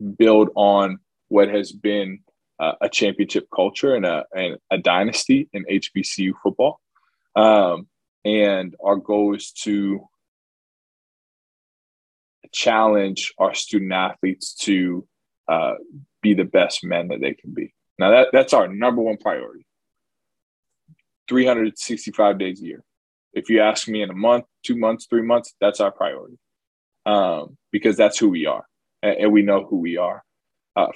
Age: 20-39